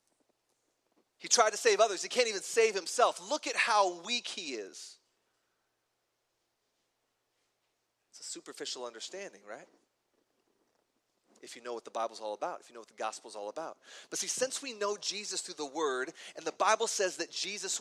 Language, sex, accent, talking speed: English, male, American, 175 wpm